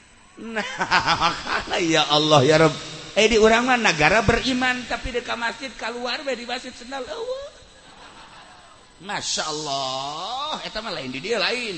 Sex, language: male, Indonesian